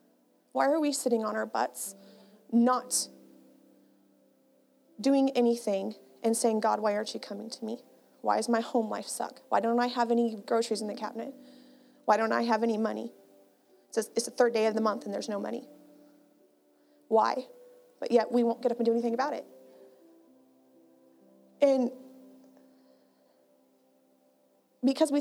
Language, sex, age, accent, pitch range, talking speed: English, female, 30-49, American, 195-250 Hz, 155 wpm